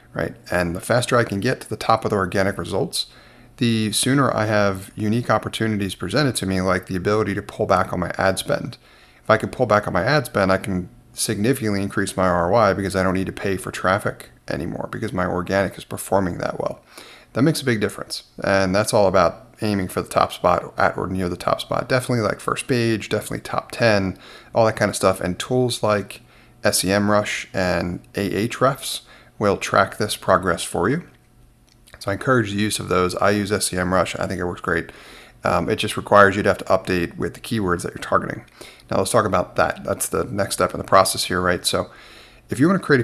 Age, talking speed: 30-49, 220 wpm